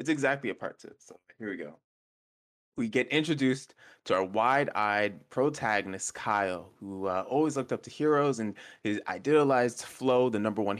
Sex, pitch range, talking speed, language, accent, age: male, 95-120 Hz, 170 wpm, English, American, 20-39